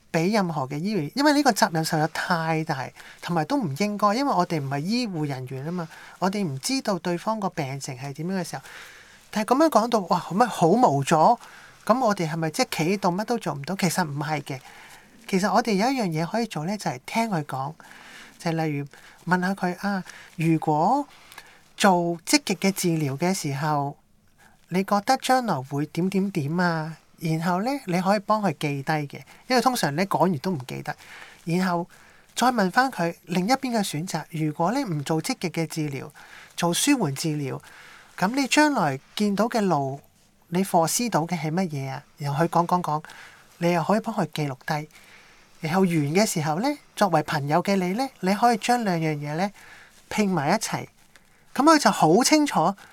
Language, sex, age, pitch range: Chinese, male, 20-39, 160-210 Hz